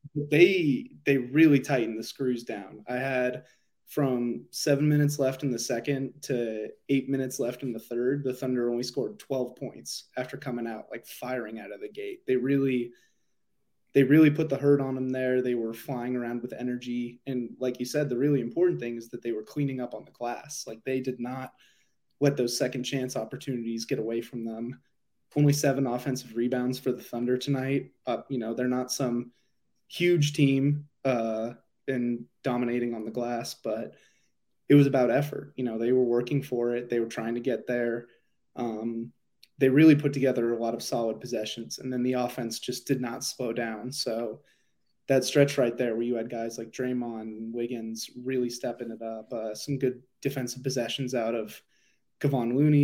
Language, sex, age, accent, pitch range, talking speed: English, male, 20-39, American, 120-135 Hz, 190 wpm